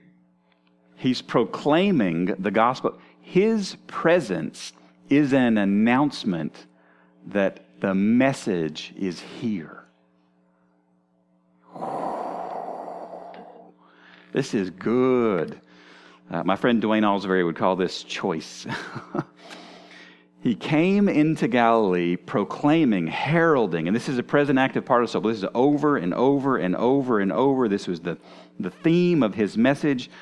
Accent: American